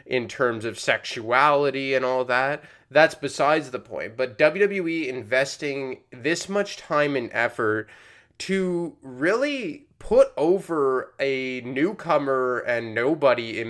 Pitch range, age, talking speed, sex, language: 120-150 Hz, 20-39, 125 wpm, male, English